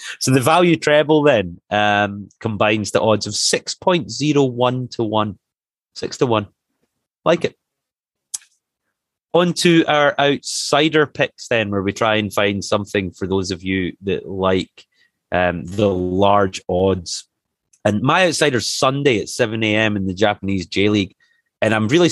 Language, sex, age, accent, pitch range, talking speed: English, male, 30-49, British, 95-125 Hz, 145 wpm